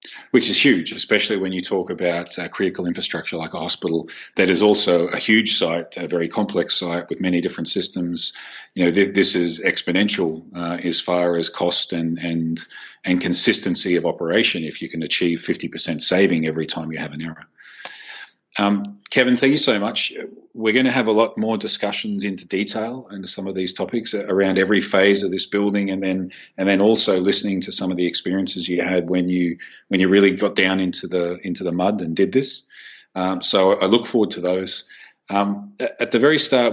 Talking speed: 200 wpm